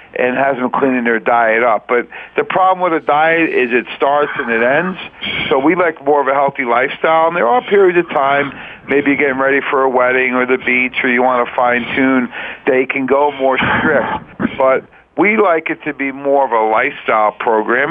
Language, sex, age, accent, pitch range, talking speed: English, male, 50-69, American, 125-145 Hz, 210 wpm